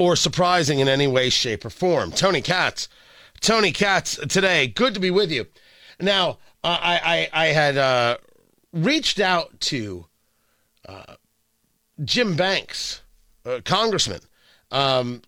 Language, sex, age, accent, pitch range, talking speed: English, male, 40-59, American, 135-200 Hz, 140 wpm